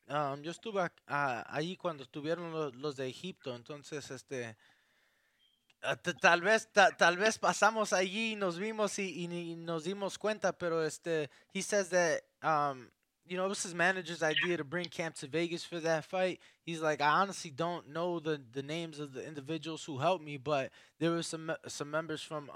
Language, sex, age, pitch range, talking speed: English, male, 20-39, 145-195 Hz, 115 wpm